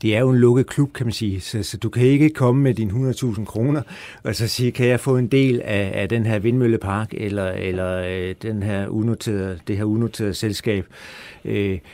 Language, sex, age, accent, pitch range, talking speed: Danish, male, 60-79, native, 100-120 Hz, 210 wpm